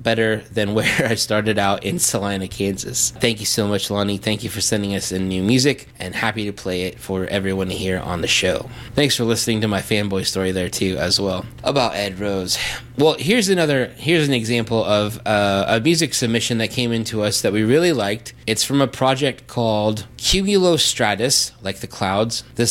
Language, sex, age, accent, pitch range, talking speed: English, male, 20-39, American, 105-130 Hz, 200 wpm